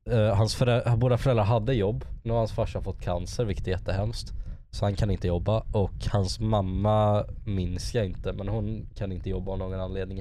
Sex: male